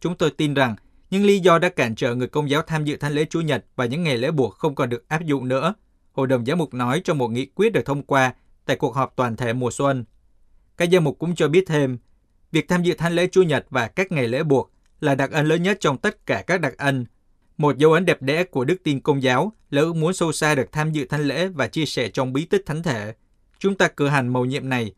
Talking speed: 270 wpm